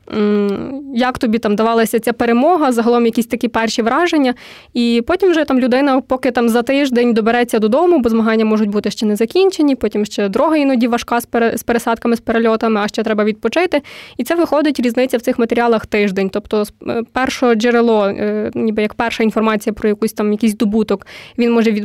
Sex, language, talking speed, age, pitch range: female, Ukrainian, 180 wpm, 20-39, 225-255 Hz